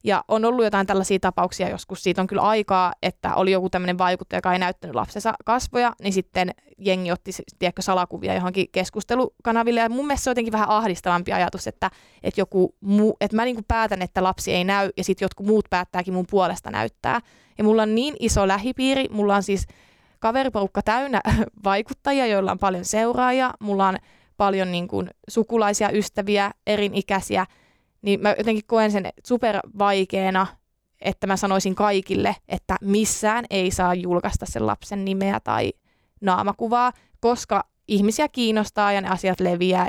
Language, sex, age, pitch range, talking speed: Finnish, female, 20-39, 185-215 Hz, 165 wpm